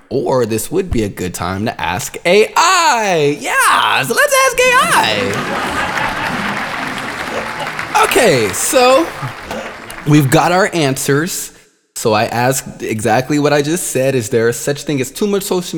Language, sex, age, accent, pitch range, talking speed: English, male, 20-39, American, 110-145 Hz, 145 wpm